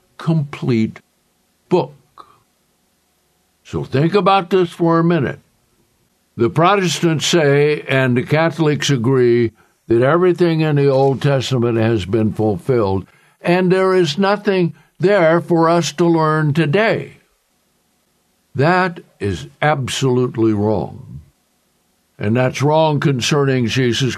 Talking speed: 110 wpm